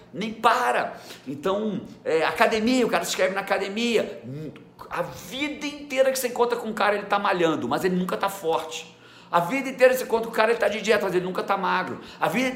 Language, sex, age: Portuguese, male, 50-69